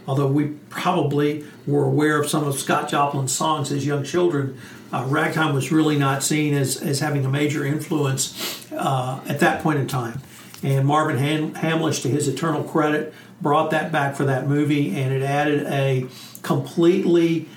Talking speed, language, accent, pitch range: 170 wpm, English, American, 140-165 Hz